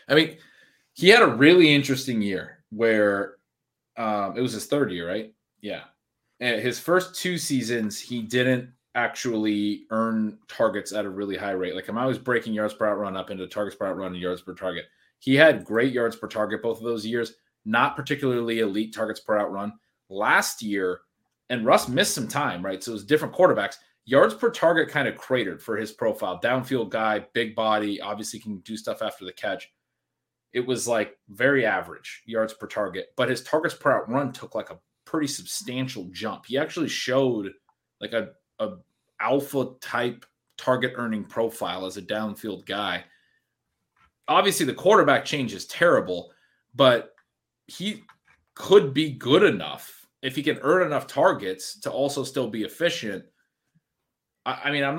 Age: 30-49